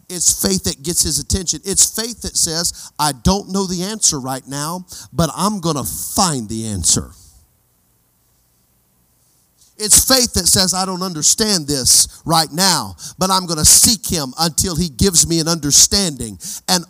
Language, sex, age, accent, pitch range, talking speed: English, male, 40-59, American, 130-195 Hz, 165 wpm